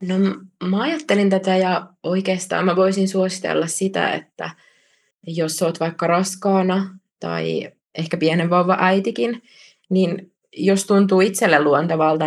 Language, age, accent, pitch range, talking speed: Finnish, 20-39, native, 155-185 Hz, 115 wpm